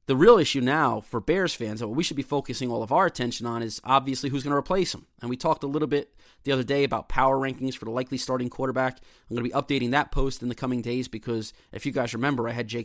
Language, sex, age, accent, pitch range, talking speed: English, male, 30-49, American, 115-140 Hz, 285 wpm